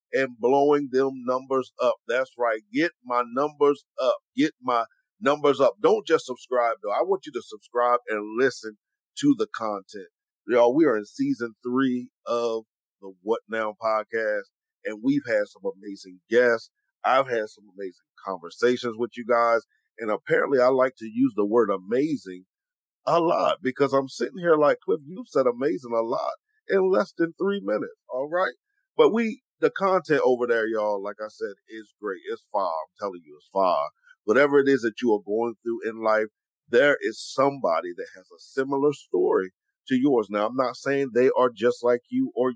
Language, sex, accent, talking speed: English, male, American, 185 wpm